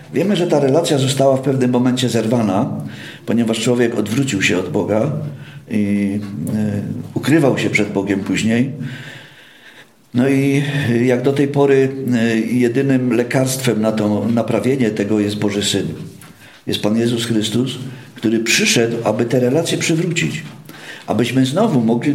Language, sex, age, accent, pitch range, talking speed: Polish, male, 50-69, native, 115-145 Hz, 135 wpm